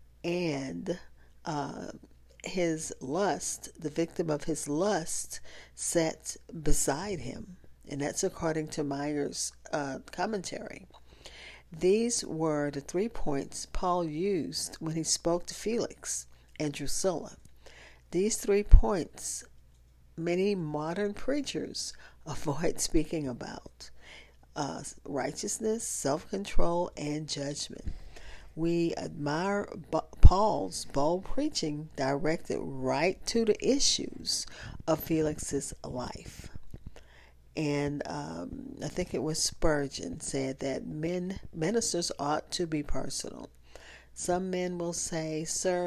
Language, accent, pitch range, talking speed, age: English, American, 145-180 Hz, 105 wpm, 50-69